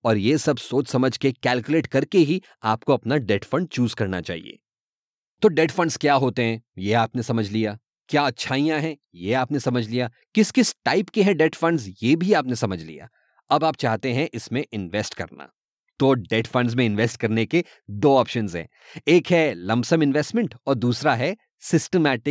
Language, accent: English, Indian